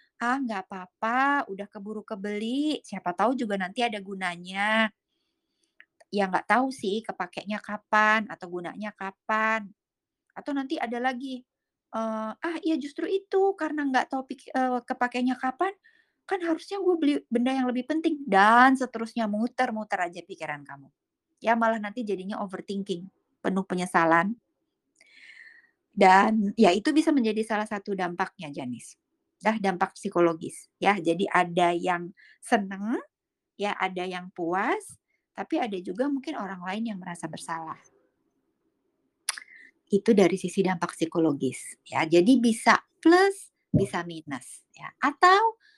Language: Indonesian